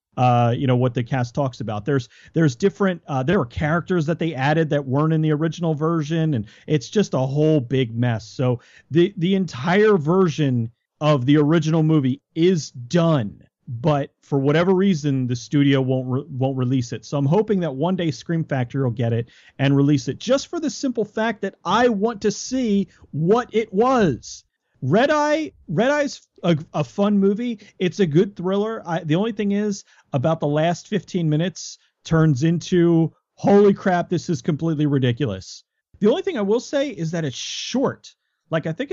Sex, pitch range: male, 140-195 Hz